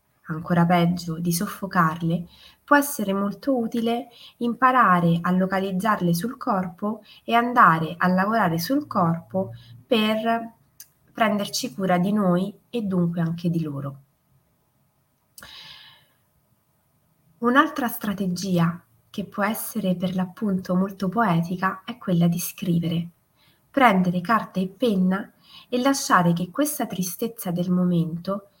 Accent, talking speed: native, 110 wpm